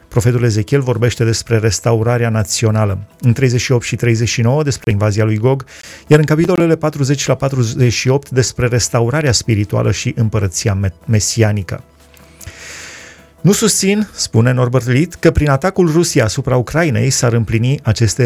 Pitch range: 110-140 Hz